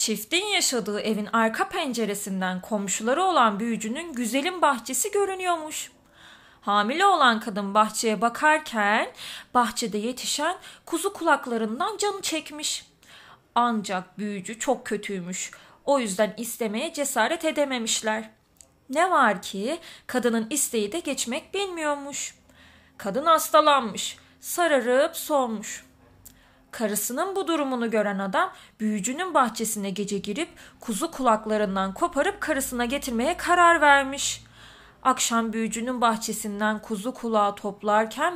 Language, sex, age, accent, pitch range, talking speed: Turkish, female, 30-49, native, 215-310 Hz, 100 wpm